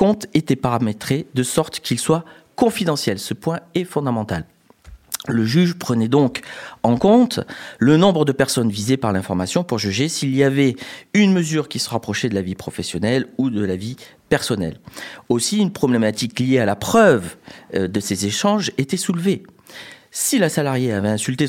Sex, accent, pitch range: male, French, 115-175 Hz